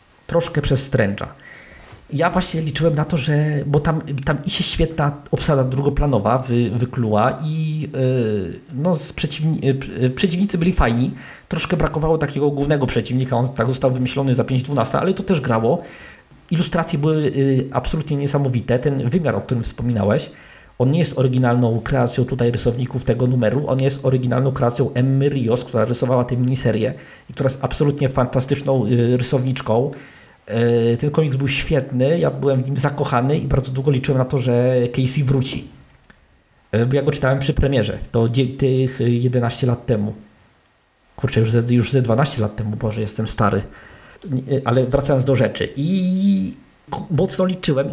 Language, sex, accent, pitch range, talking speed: Polish, male, native, 120-145 Hz, 155 wpm